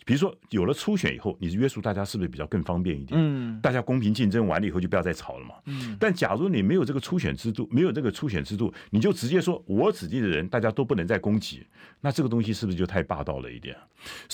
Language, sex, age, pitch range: Chinese, male, 50-69, 100-150 Hz